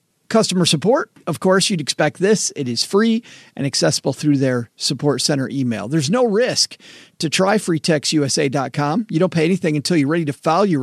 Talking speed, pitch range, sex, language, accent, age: 185 wpm, 145-185 Hz, male, English, American, 40-59